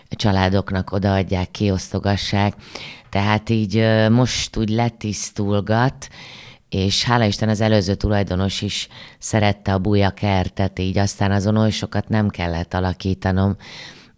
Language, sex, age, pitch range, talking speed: Hungarian, female, 30-49, 90-110 Hz, 110 wpm